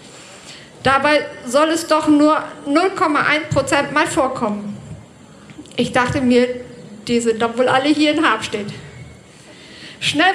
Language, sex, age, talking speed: German, female, 50-69, 130 wpm